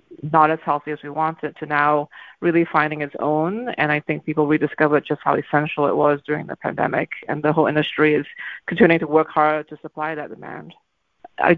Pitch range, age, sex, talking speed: 150-165 Hz, 30-49, female, 200 wpm